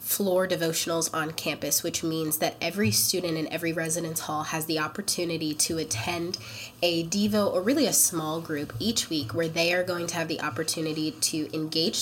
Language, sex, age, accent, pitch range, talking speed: English, female, 20-39, American, 160-185 Hz, 185 wpm